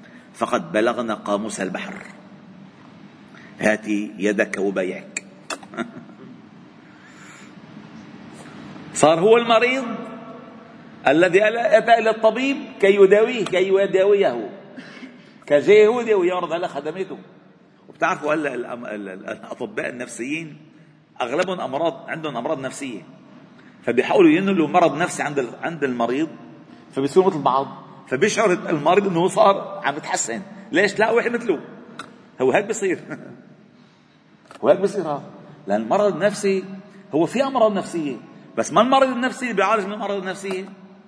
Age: 50-69